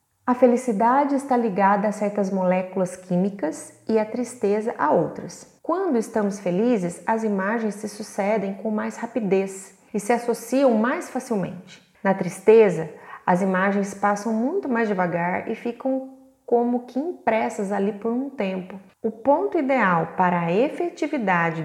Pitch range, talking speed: 185-250 Hz, 140 wpm